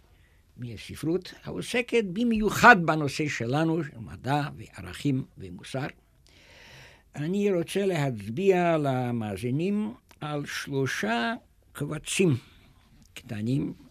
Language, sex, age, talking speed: Hebrew, male, 60-79, 75 wpm